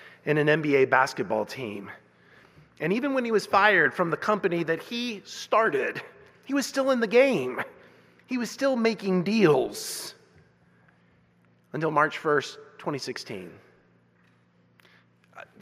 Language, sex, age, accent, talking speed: English, male, 30-49, American, 125 wpm